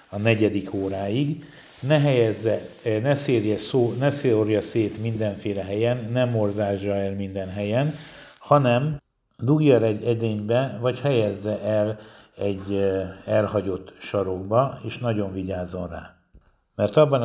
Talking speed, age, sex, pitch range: 115 wpm, 60-79, male, 100-125 Hz